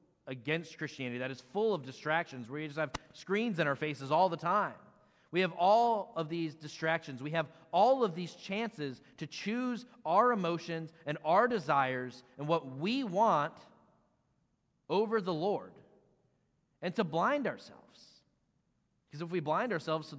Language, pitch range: English, 150-195 Hz